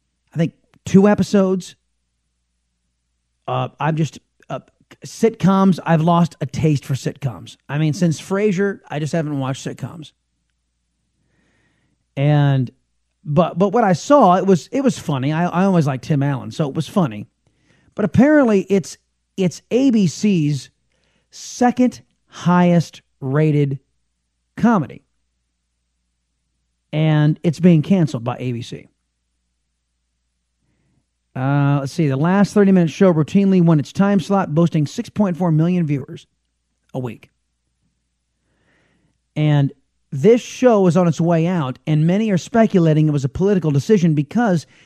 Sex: male